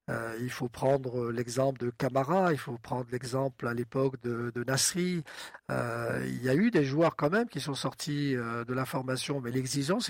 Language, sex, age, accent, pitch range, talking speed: French, male, 50-69, French, 125-150 Hz, 190 wpm